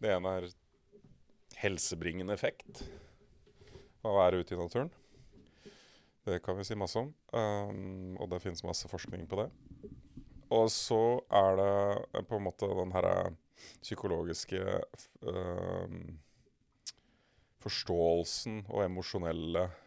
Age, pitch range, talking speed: 30-49, 85-100 Hz, 120 wpm